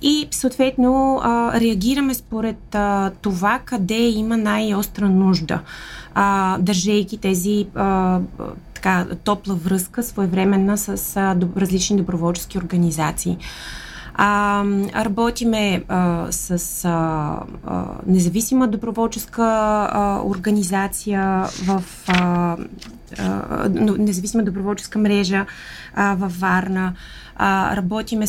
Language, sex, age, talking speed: Bulgarian, female, 20-39, 65 wpm